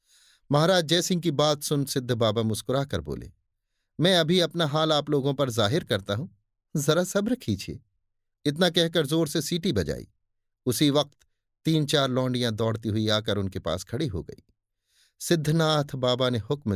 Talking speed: 165 wpm